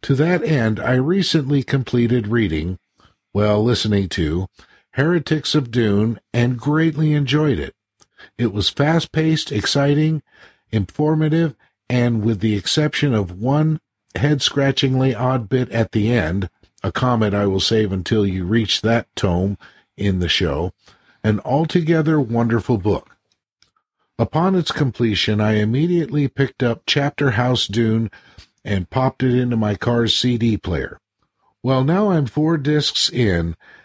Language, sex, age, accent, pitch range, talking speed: English, male, 50-69, American, 110-145 Hz, 135 wpm